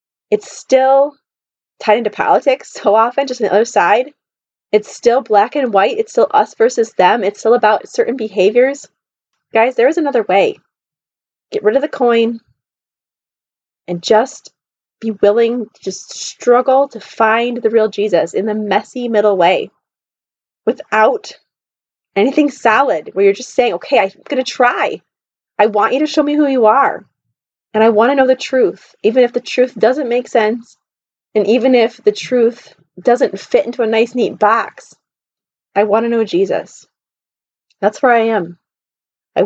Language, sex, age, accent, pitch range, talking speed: English, female, 20-39, American, 215-265 Hz, 170 wpm